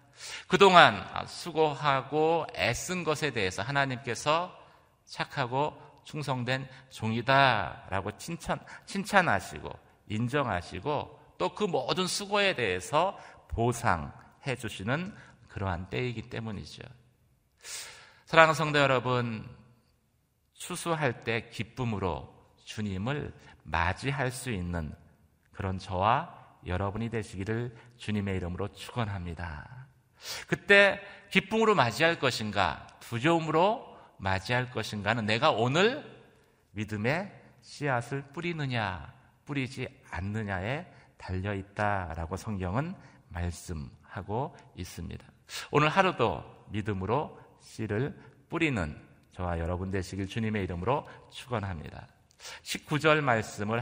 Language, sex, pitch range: Korean, male, 95-145 Hz